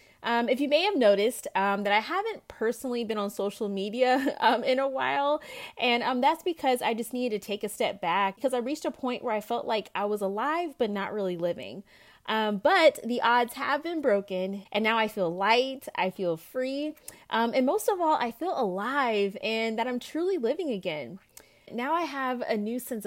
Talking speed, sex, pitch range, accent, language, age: 215 wpm, female, 200-260 Hz, American, English, 30-49